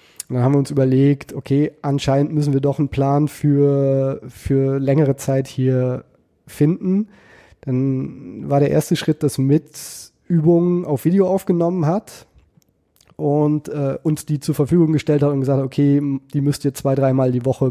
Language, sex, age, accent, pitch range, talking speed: German, male, 20-39, German, 135-155 Hz, 170 wpm